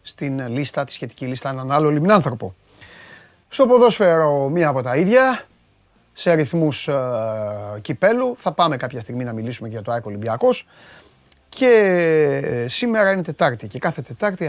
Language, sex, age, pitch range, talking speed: Greek, male, 30-49, 135-190 Hz, 135 wpm